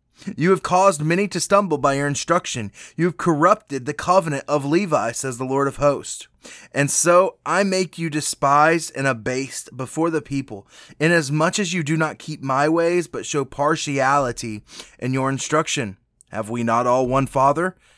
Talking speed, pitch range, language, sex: 175 wpm, 130-165 Hz, English, male